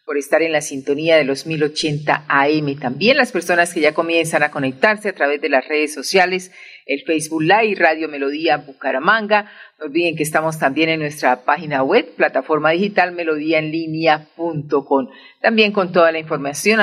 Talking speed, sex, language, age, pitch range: 165 wpm, female, Spanish, 40-59, 145-180 Hz